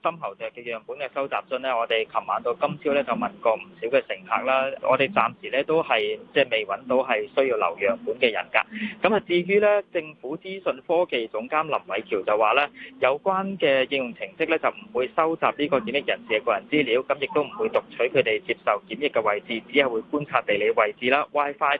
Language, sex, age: Chinese, male, 20-39